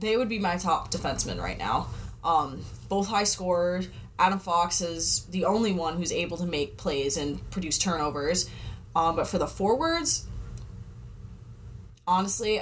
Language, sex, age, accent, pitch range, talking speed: English, female, 20-39, American, 115-180 Hz, 150 wpm